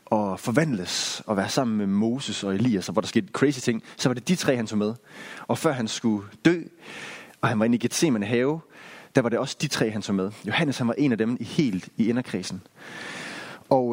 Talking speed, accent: 235 wpm, native